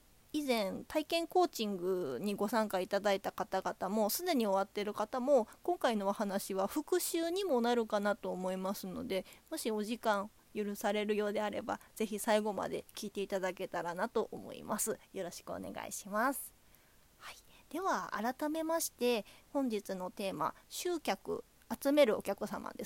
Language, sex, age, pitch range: Japanese, female, 20-39, 205-295 Hz